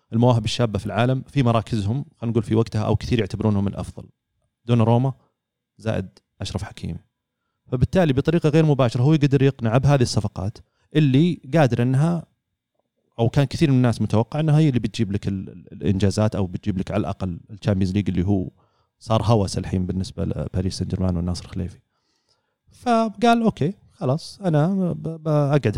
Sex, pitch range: male, 105-140 Hz